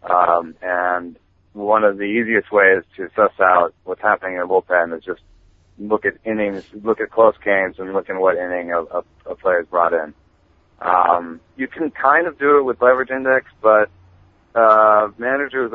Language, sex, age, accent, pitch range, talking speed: English, male, 30-49, American, 90-110 Hz, 185 wpm